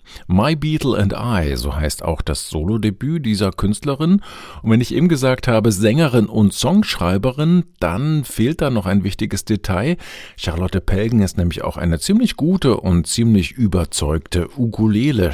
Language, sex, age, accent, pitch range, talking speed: German, male, 50-69, German, 80-110 Hz, 155 wpm